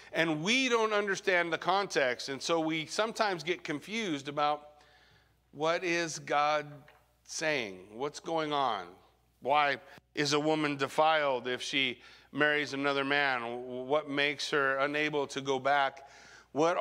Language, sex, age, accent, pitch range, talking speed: English, male, 50-69, American, 125-175 Hz, 135 wpm